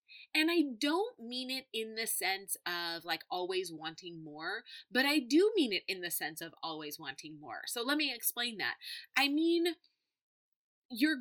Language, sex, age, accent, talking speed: English, female, 30-49, American, 175 wpm